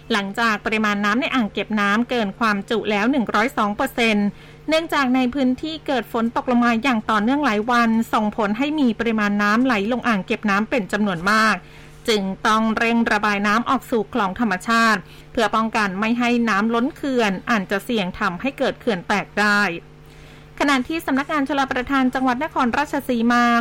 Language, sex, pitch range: Thai, female, 215-255 Hz